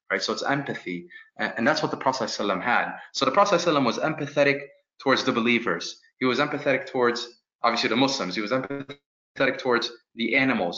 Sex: male